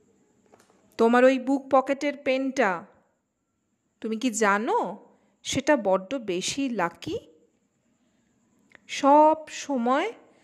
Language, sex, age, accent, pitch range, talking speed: Bengali, female, 40-59, native, 215-275 Hz, 80 wpm